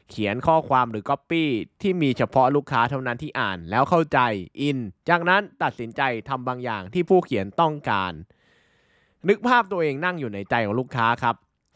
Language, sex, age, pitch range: Thai, male, 20-39, 115-155 Hz